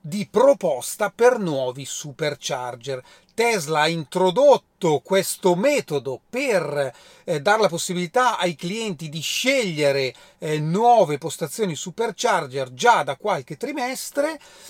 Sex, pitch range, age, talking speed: male, 150-215 Hz, 40-59, 110 wpm